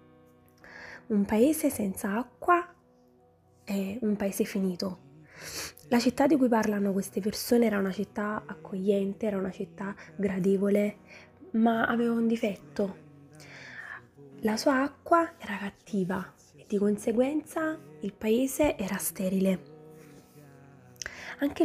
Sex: female